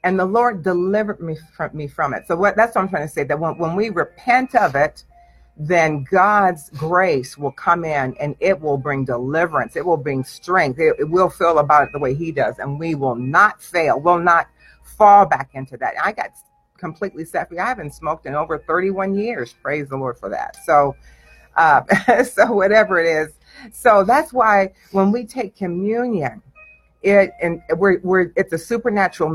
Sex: female